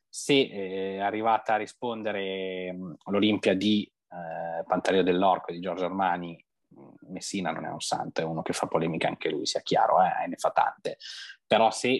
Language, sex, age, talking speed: Italian, male, 20-39, 180 wpm